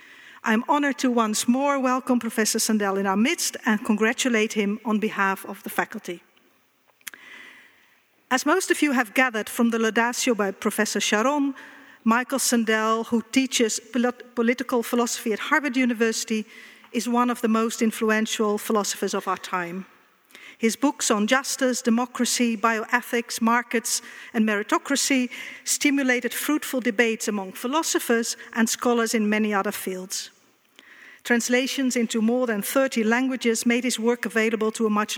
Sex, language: female, Dutch